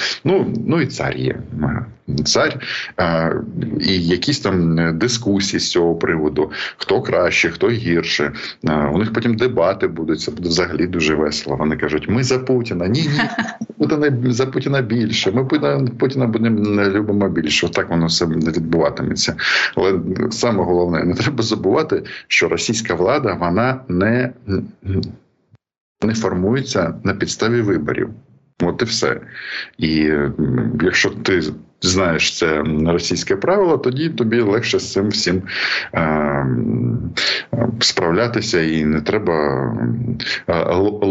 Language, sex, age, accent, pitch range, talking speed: Ukrainian, male, 50-69, native, 85-120 Hz, 125 wpm